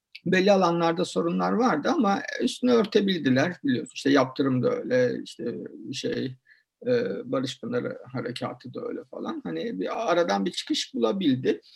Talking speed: 135 wpm